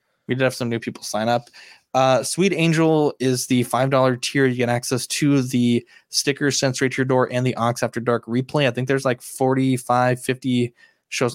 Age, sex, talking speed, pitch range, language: 20-39, male, 200 wpm, 120-135 Hz, English